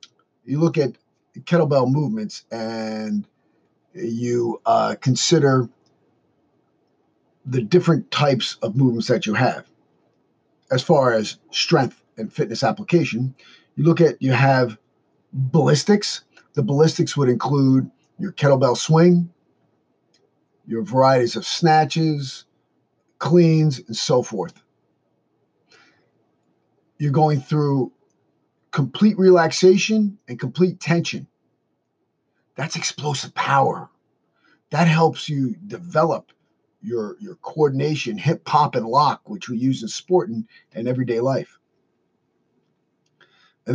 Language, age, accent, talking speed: English, 50-69, American, 105 wpm